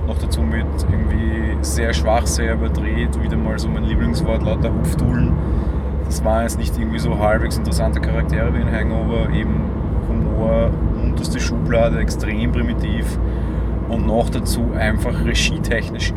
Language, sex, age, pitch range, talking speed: German, male, 30-49, 80-100 Hz, 140 wpm